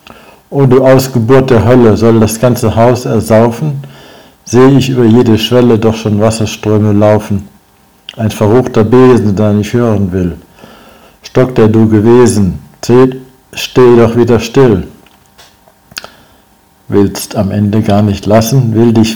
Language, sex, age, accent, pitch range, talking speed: German, male, 60-79, German, 105-120 Hz, 140 wpm